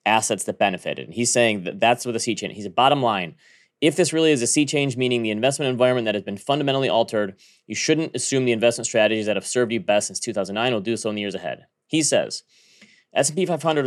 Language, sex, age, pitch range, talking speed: English, male, 30-49, 115-140 Hz, 240 wpm